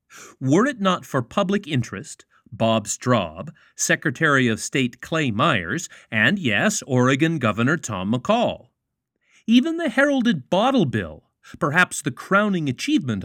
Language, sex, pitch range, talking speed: English, male, 115-180 Hz, 125 wpm